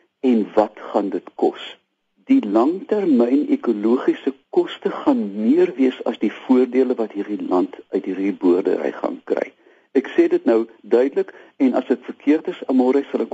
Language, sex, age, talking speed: Dutch, male, 60-79, 165 wpm